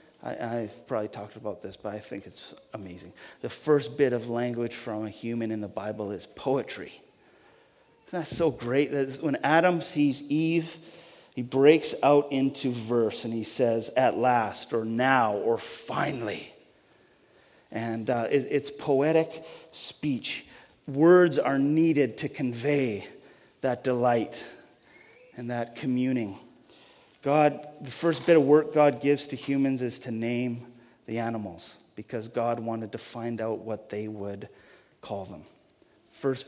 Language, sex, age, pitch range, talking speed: English, male, 30-49, 115-140 Hz, 145 wpm